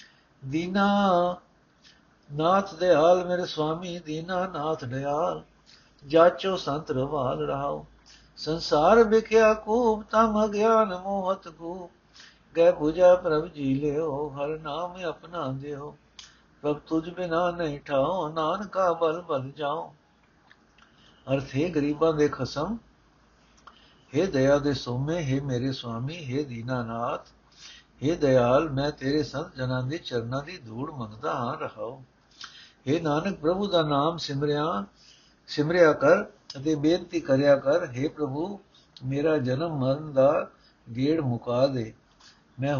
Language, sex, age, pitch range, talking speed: Punjabi, male, 60-79, 135-170 Hz, 125 wpm